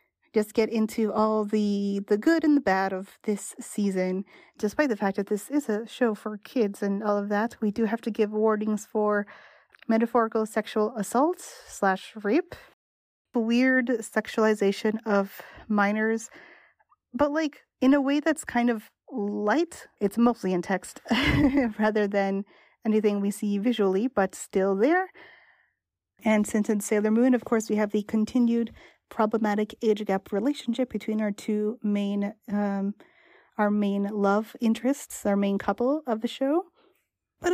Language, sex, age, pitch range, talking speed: English, female, 30-49, 210-265 Hz, 155 wpm